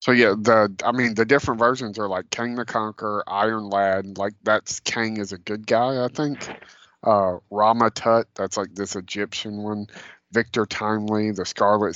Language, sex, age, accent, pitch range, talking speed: English, male, 30-49, American, 90-110 Hz, 175 wpm